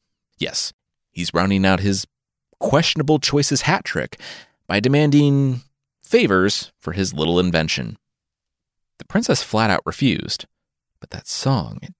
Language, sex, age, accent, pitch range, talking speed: English, male, 30-49, American, 85-135 Hz, 120 wpm